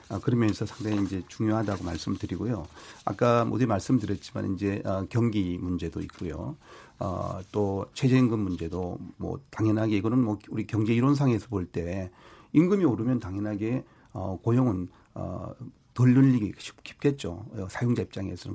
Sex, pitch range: male, 100-130 Hz